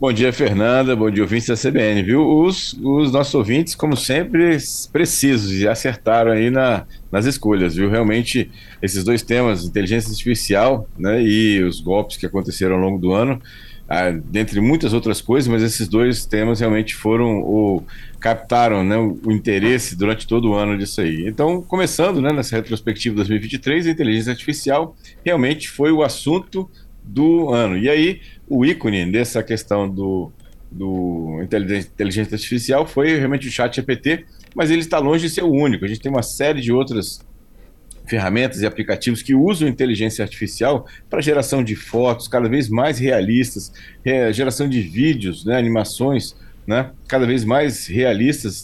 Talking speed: 160 wpm